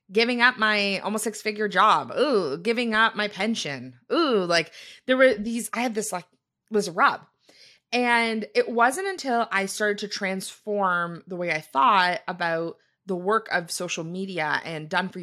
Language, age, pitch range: English, 20-39, 165-220 Hz